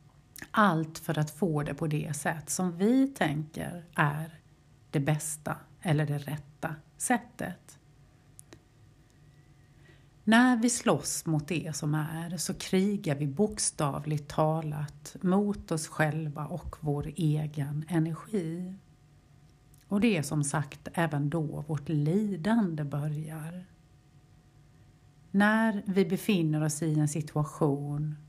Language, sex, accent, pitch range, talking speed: Swedish, female, native, 145-175 Hz, 115 wpm